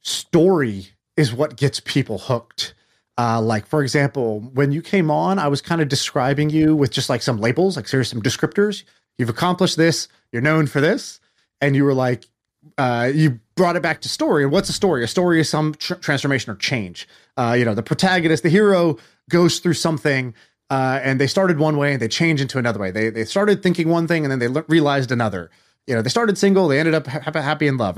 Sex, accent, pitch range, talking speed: male, American, 125-165 Hz, 225 wpm